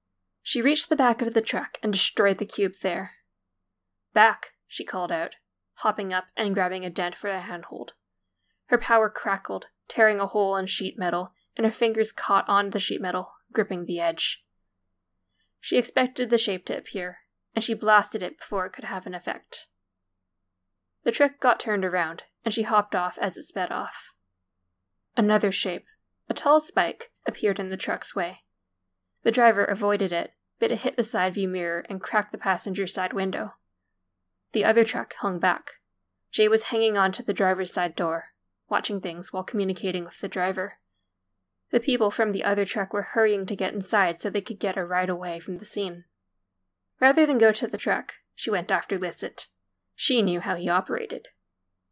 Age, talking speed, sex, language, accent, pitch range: 10-29, 180 wpm, female, English, American, 170-220 Hz